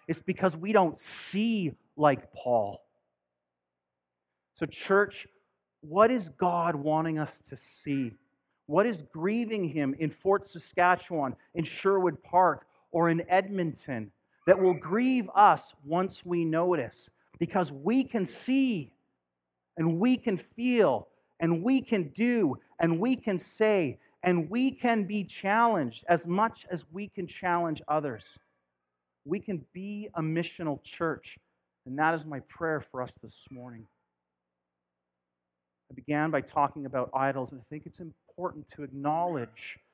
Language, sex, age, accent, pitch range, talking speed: English, male, 40-59, American, 125-185 Hz, 140 wpm